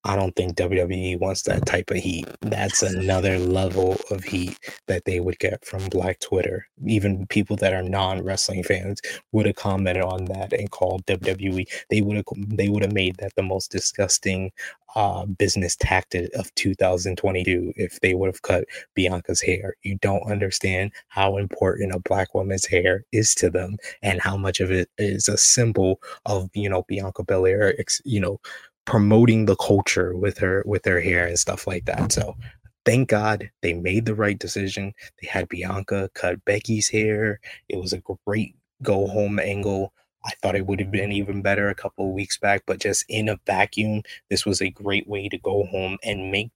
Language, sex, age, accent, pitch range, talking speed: English, male, 20-39, American, 95-105 Hz, 190 wpm